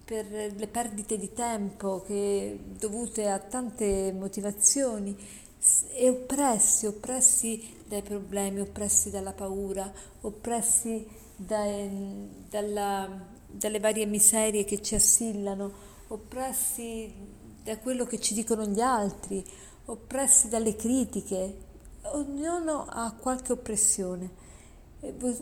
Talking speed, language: 90 wpm, Italian